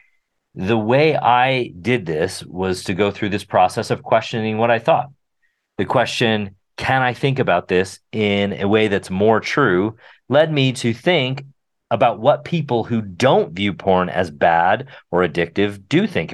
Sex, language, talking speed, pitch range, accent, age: male, English, 170 wpm, 95-125 Hz, American, 40-59